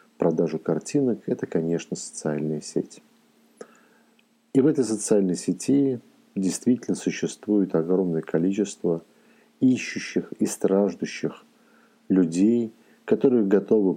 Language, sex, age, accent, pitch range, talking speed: Russian, male, 50-69, native, 85-110 Hz, 90 wpm